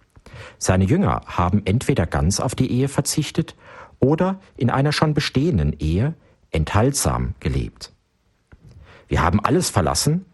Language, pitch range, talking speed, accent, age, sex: German, 80-135 Hz, 120 wpm, German, 50-69, male